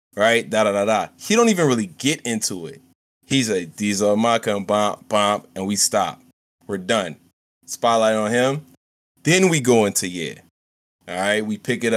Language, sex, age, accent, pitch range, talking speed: English, male, 20-39, American, 95-125 Hz, 180 wpm